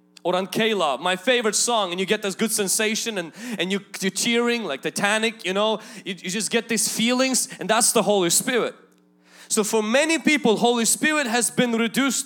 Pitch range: 190-255 Hz